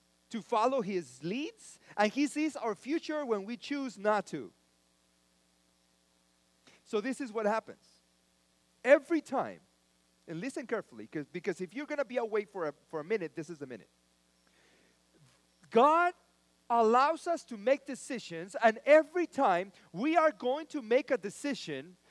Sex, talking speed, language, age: male, 150 wpm, English, 40-59